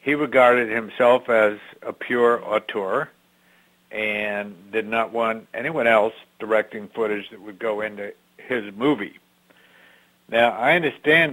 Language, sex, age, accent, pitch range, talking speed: English, male, 60-79, American, 105-125 Hz, 125 wpm